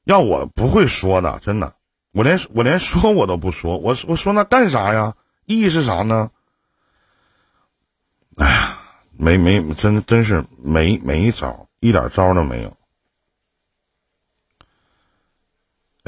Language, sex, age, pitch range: Chinese, male, 50-69, 85-115 Hz